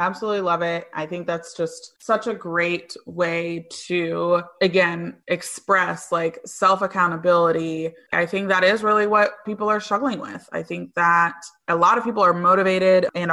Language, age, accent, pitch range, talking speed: English, 20-39, American, 165-185 Hz, 165 wpm